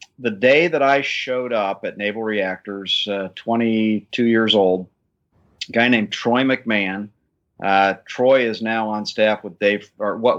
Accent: American